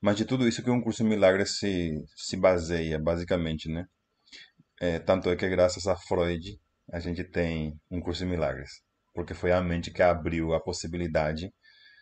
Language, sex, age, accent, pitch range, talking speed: Portuguese, male, 20-39, Brazilian, 85-100 Hz, 180 wpm